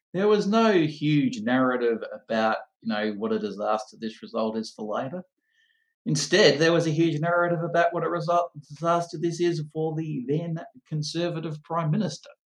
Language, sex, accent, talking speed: English, male, Australian, 170 wpm